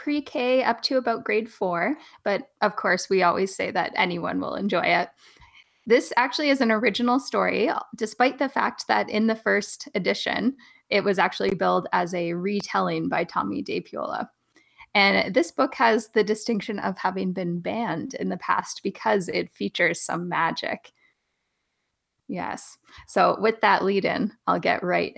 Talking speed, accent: 160 wpm, American